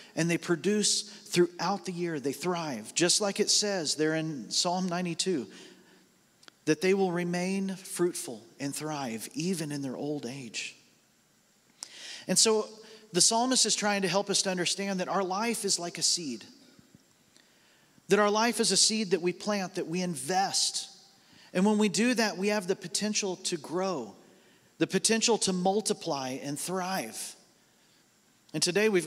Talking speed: 160 wpm